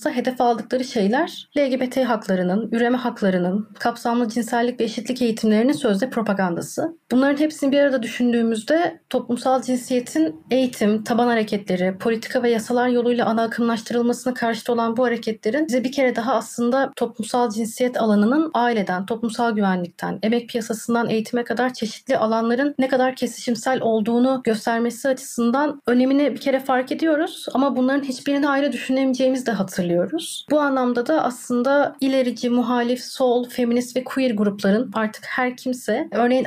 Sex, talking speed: female, 140 wpm